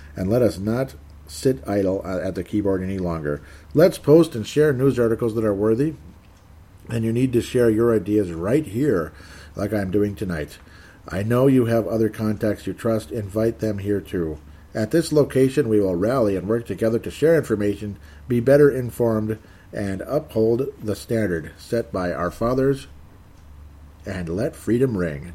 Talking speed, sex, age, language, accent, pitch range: 170 wpm, male, 50-69, English, American, 90-125 Hz